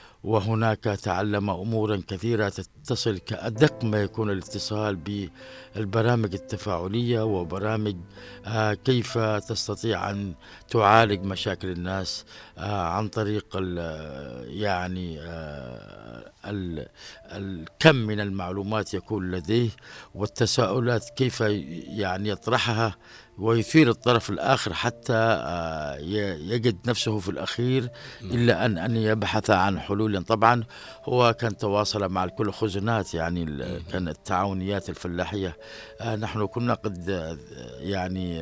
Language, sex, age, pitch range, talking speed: Arabic, male, 60-79, 90-115 Hz, 90 wpm